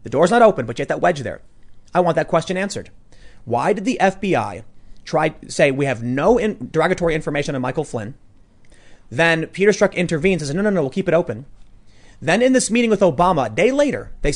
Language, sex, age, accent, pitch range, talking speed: English, male, 30-49, American, 120-175 Hz, 220 wpm